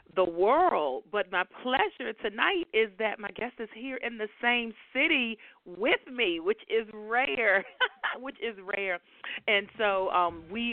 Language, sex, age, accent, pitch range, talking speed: English, female, 40-59, American, 190-230 Hz, 155 wpm